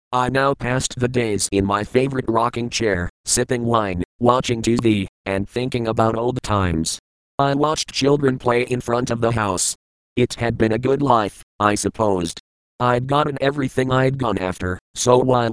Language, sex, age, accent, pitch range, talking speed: English, male, 40-59, American, 95-125 Hz, 170 wpm